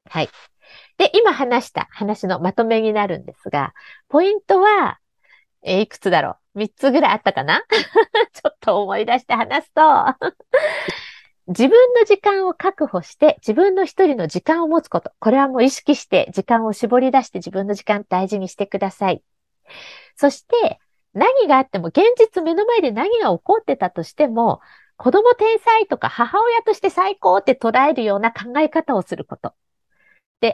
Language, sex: Japanese, female